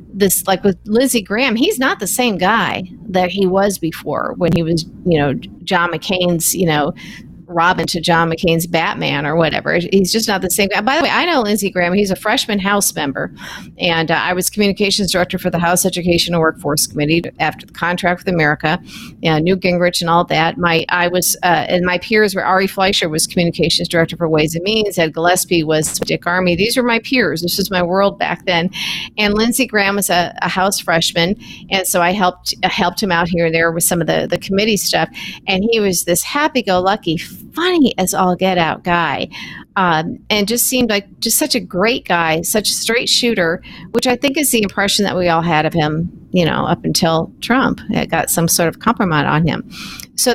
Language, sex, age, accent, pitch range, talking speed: English, female, 50-69, American, 170-210 Hz, 215 wpm